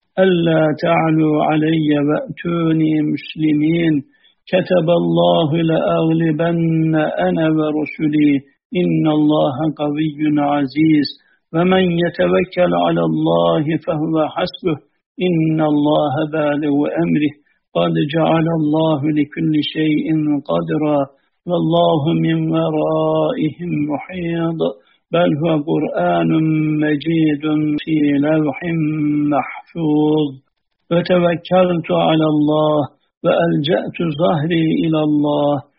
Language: Turkish